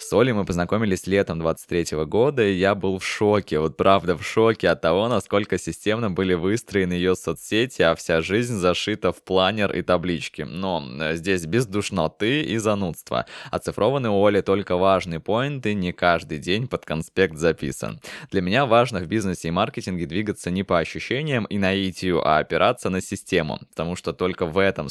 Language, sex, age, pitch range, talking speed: Russian, male, 20-39, 85-105 Hz, 175 wpm